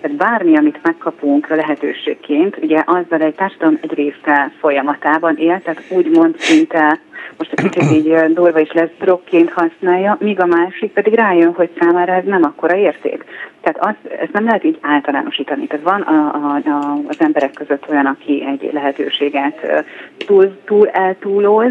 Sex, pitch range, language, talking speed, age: female, 145-195 Hz, Hungarian, 155 wpm, 30-49